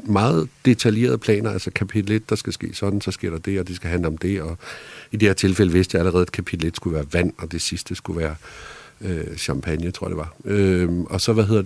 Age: 50-69